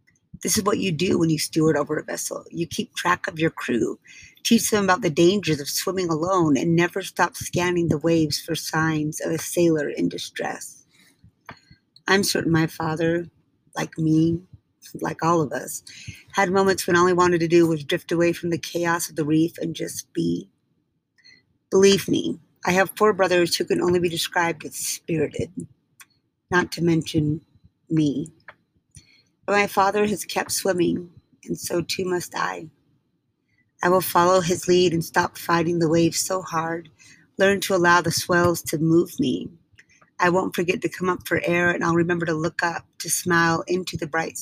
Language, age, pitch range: English, 30-49, 160-180 Hz